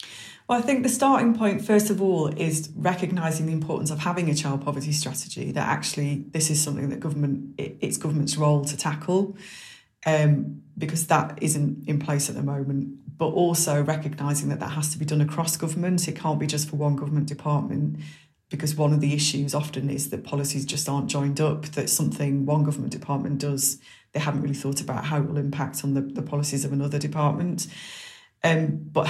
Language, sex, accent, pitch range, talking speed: English, female, British, 145-155 Hz, 200 wpm